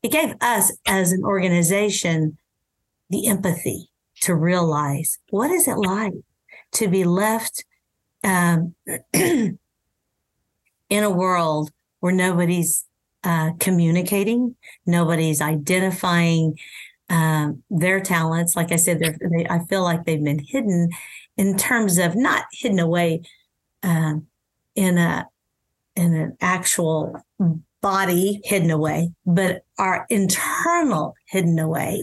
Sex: female